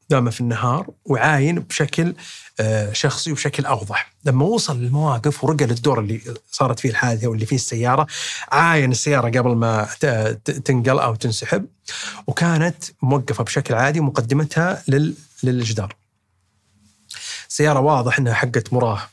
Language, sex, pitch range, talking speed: Arabic, male, 120-145 Hz, 120 wpm